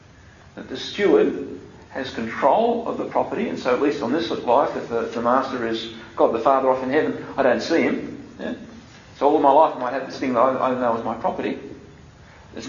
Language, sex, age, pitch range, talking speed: English, male, 40-59, 125-180 Hz, 235 wpm